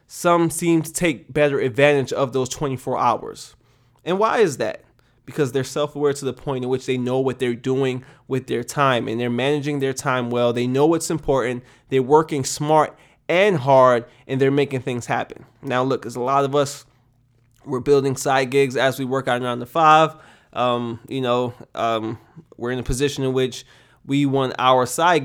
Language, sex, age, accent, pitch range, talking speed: English, male, 20-39, American, 125-160 Hz, 195 wpm